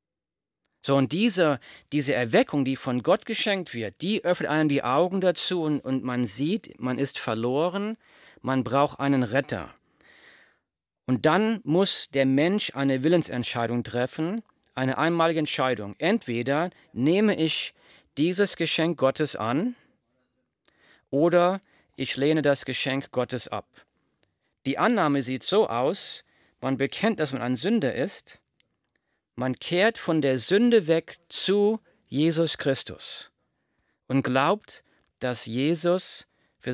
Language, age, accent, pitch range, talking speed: German, 40-59, German, 125-170 Hz, 125 wpm